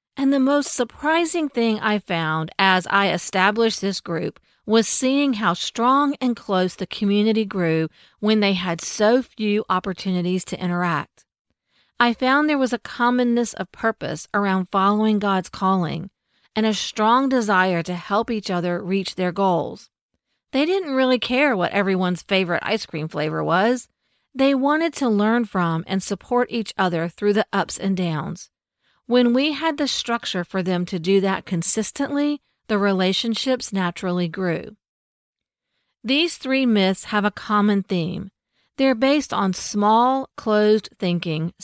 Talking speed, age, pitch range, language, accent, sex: 150 wpm, 40-59, 180-240 Hz, English, American, female